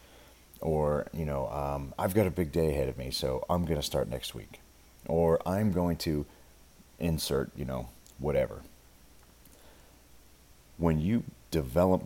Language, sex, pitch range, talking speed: English, male, 70-80 Hz, 150 wpm